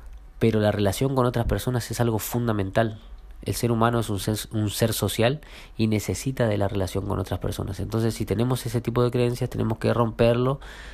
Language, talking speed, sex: Spanish, 195 wpm, male